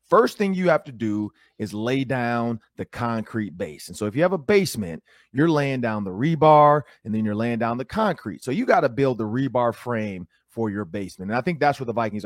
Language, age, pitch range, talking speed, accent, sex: English, 30-49, 110-145 Hz, 240 wpm, American, male